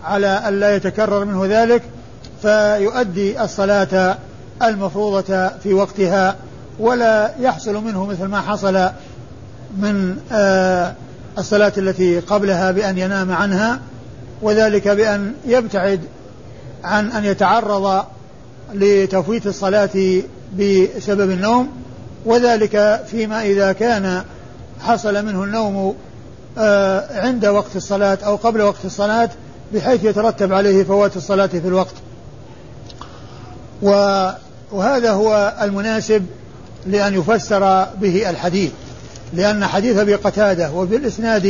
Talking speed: 95 wpm